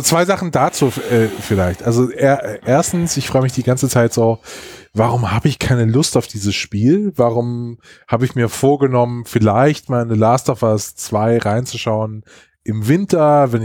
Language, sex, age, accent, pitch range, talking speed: German, male, 20-39, German, 115-140 Hz, 165 wpm